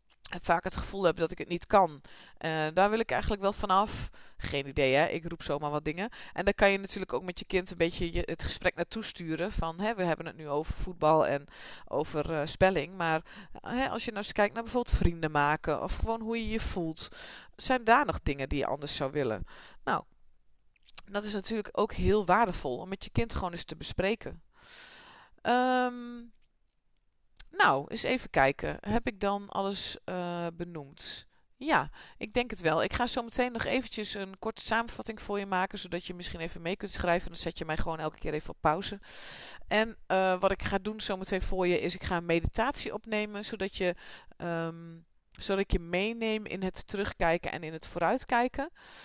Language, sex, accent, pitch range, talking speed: Dutch, female, Dutch, 165-215 Hz, 200 wpm